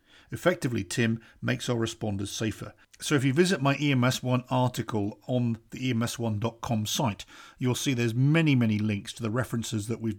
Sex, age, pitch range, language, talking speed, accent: male, 50-69, 110-145 Hz, English, 165 wpm, British